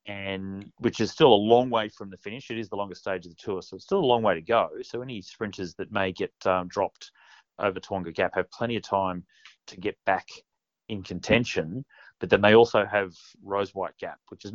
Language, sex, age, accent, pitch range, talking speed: English, male, 30-49, Australian, 95-105 Hz, 230 wpm